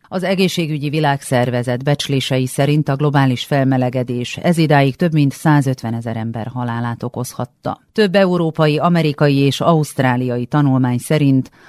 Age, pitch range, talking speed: 40-59, 125-155 Hz, 125 wpm